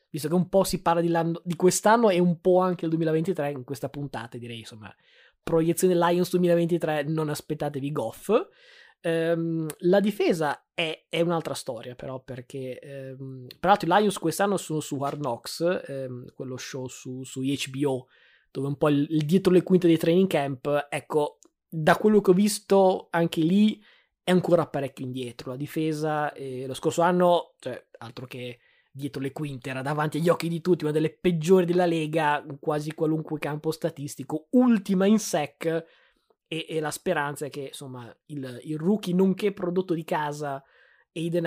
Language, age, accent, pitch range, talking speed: Italian, 20-39, native, 140-175 Hz, 165 wpm